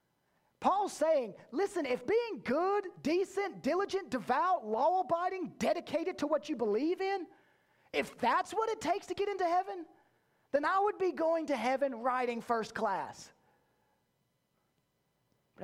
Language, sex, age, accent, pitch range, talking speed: English, male, 30-49, American, 215-325 Hz, 140 wpm